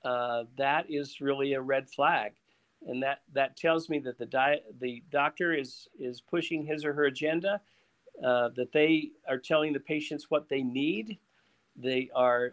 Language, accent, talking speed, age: English, American, 170 wpm, 50-69